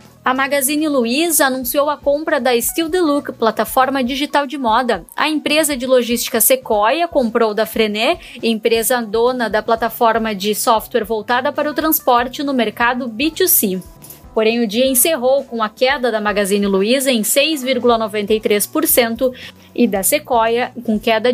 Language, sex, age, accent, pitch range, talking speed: Portuguese, female, 10-29, Brazilian, 230-285 Hz, 145 wpm